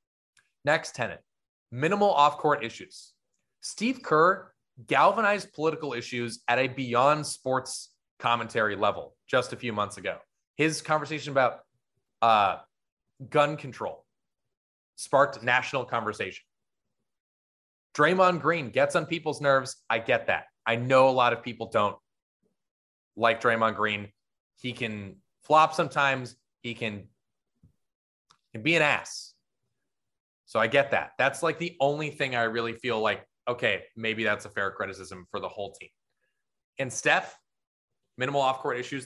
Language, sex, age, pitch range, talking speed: English, male, 20-39, 115-145 Hz, 135 wpm